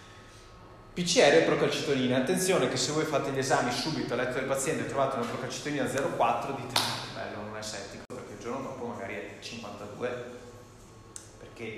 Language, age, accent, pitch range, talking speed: Italian, 20-39, native, 110-135 Hz, 175 wpm